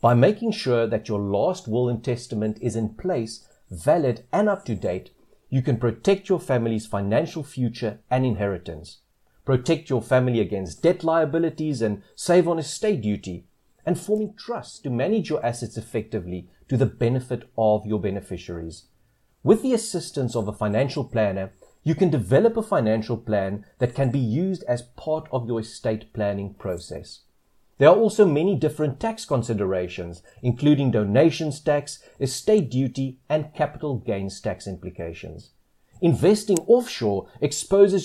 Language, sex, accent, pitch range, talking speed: English, male, South African, 105-155 Hz, 145 wpm